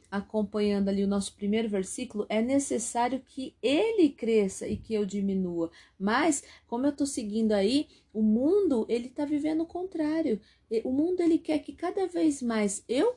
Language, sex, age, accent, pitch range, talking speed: Portuguese, female, 40-59, Brazilian, 215-310 Hz, 170 wpm